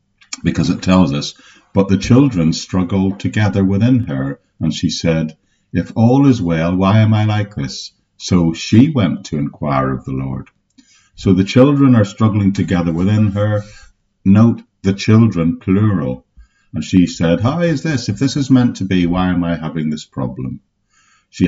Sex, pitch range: male, 80-105 Hz